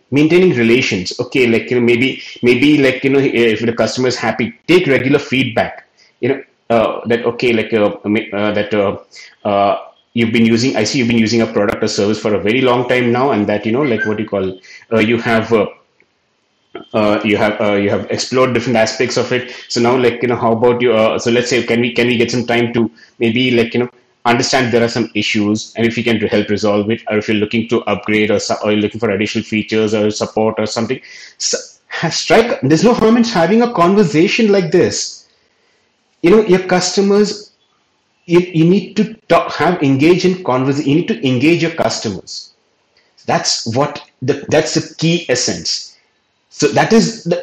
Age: 30-49